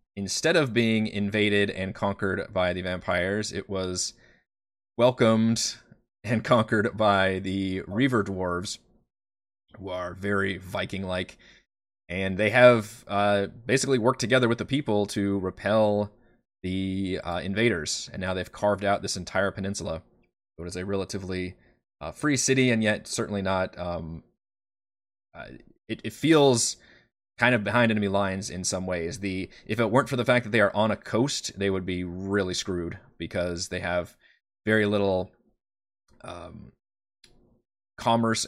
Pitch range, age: 90-110 Hz, 20-39